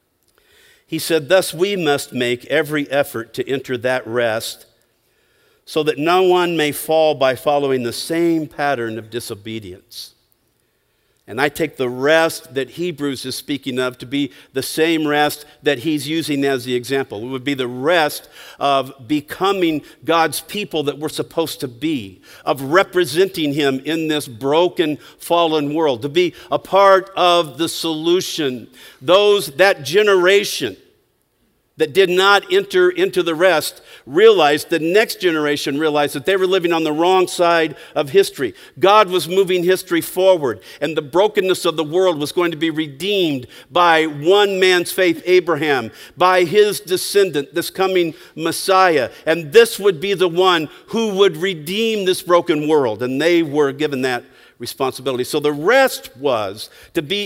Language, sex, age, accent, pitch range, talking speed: English, male, 50-69, American, 145-190 Hz, 160 wpm